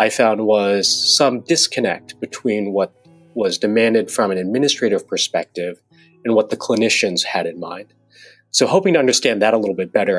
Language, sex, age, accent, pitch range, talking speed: English, male, 30-49, American, 100-140 Hz, 170 wpm